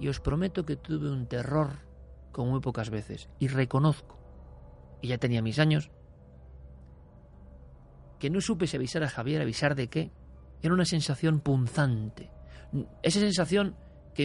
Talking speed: 145 wpm